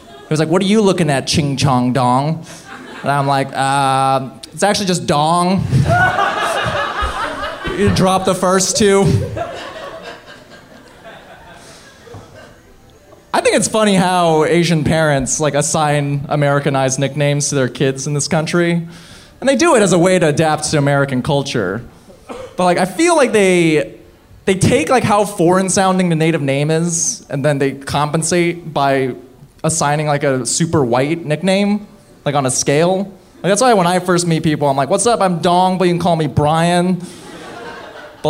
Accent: American